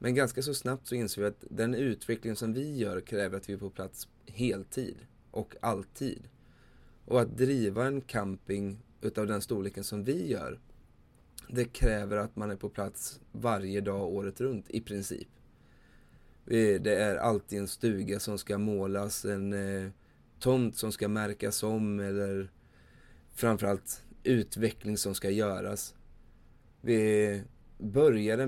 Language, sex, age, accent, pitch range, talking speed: Swedish, male, 20-39, native, 100-115 Hz, 145 wpm